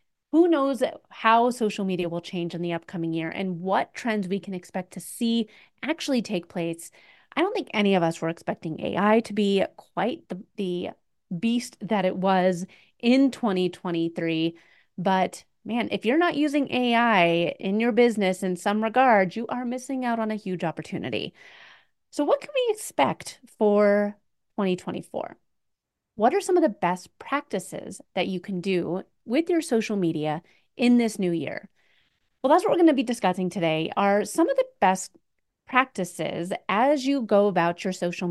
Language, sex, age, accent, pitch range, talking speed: English, female, 30-49, American, 180-245 Hz, 170 wpm